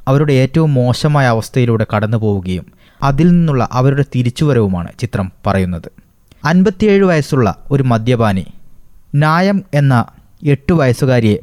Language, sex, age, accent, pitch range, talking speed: Malayalam, male, 20-39, native, 110-145 Hz, 105 wpm